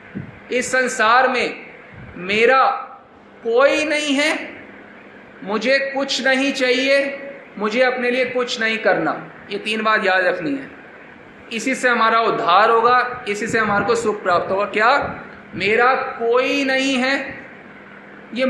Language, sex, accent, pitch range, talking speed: Hindi, male, native, 225-270 Hz, 135 wpm